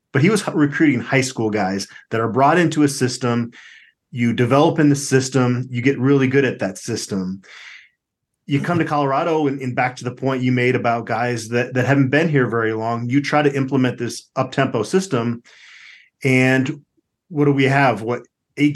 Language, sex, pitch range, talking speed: English, male, 120-145 Hz, 190 wpm